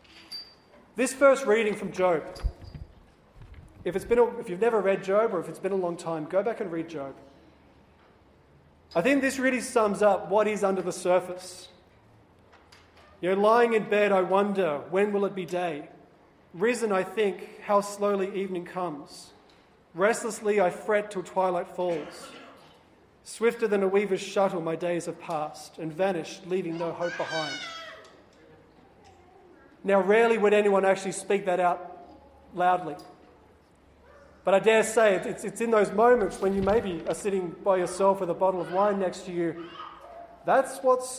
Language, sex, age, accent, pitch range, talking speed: English, male, 30-49, Australian, 175-210 Hz, 165 wpm